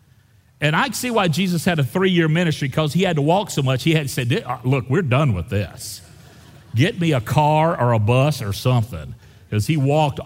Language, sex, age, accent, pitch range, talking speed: English, male, 50-69, American, 120-175 Hz, 215 wpm